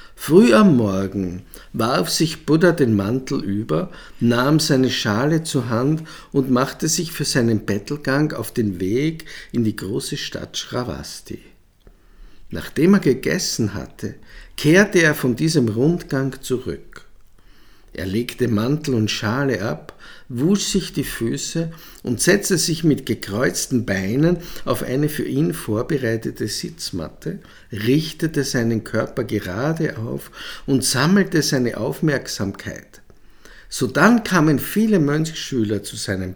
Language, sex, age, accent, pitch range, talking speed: German, male, 50-69, Austrian, 110-165 Hz, 125 wpm